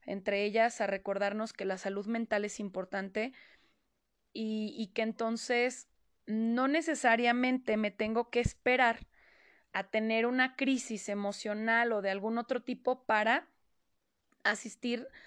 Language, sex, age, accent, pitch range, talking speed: Spanish, female, 20-39, Mexican, 210-245 Hz, 125 wpm